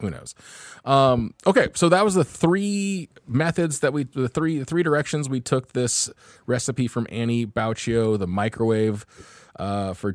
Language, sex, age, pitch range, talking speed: English, male, 20-39, 100-130 Hz, 170 wpm